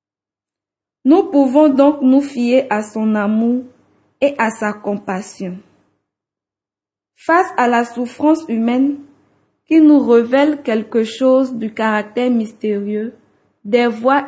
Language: French